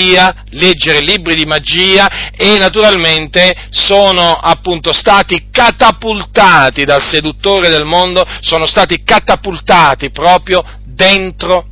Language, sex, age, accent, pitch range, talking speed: Italian, male, 40-59, native, 160-190 Hz, 95 wpm